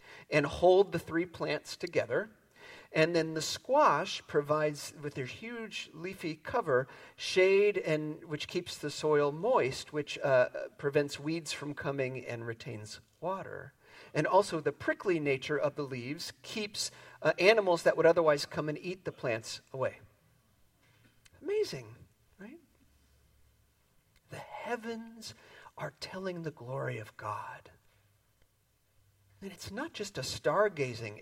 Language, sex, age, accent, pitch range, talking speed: English, male, 40-59, American, 130-180 Hz, 130 wpm